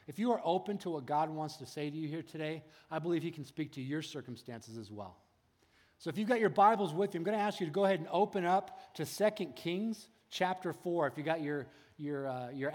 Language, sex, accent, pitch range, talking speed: English, male, American, 145-185 Hz, 260 wpm